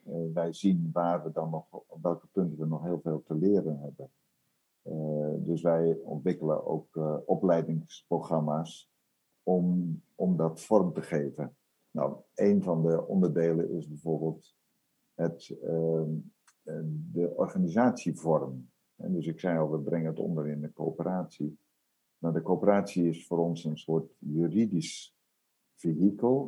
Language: Dutch